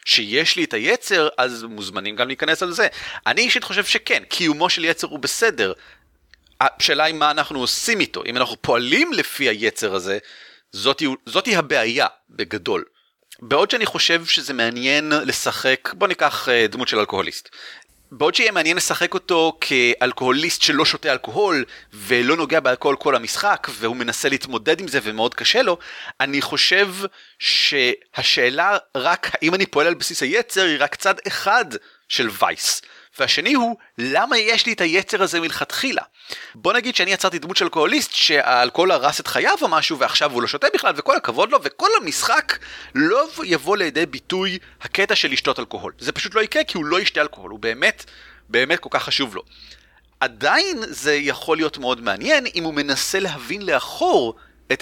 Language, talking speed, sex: Hebrew, 165 wpm, male